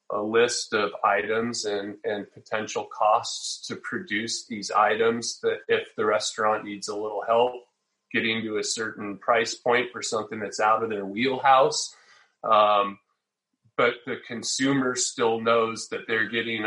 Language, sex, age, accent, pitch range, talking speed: English, male, 30-49, American, 105-125 Hz, 150 wpm